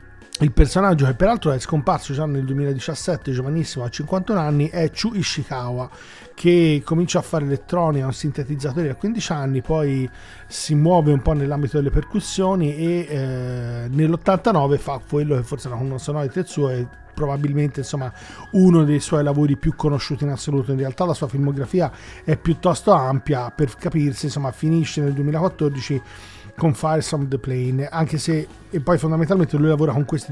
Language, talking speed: Italian, 165 wpm